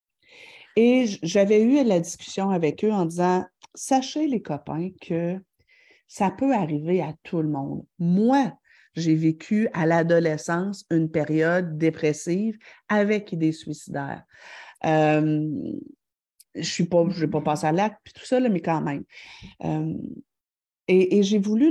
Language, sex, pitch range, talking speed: French, female, 170-230 Hz, 150 wpm